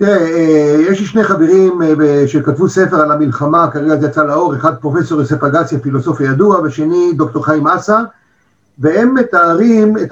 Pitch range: 150-200 Hz